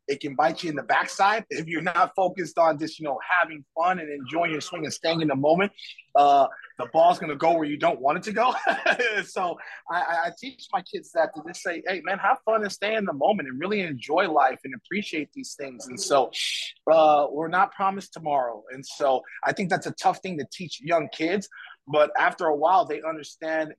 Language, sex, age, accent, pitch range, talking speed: English, male, 30-49, American, 145-180 Hz, 225 wpm